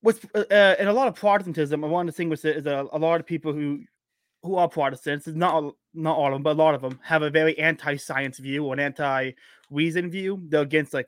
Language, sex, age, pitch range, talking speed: English, male, 20-39, 140-160 Hz, 260 wpm